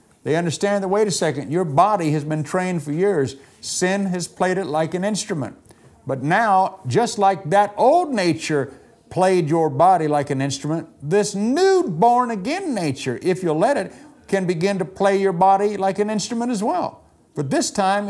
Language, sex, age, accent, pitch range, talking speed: English, male, 50-69, American, 145-205 Hz, 180 wpm